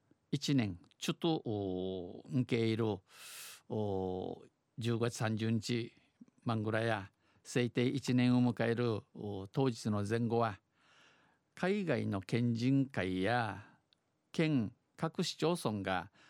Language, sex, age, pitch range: Japanese, male, 50-69, 105-130 Hz